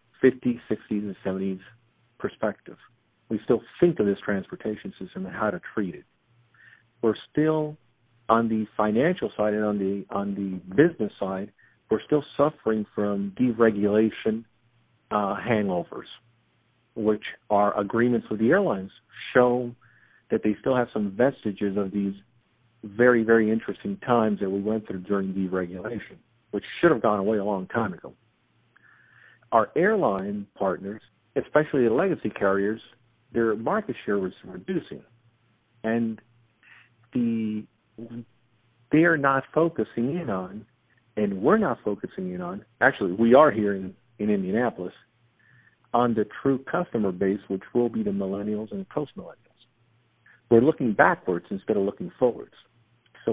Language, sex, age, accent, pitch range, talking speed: English, male, 50-69, American, 105-120 Hz, 140 wpm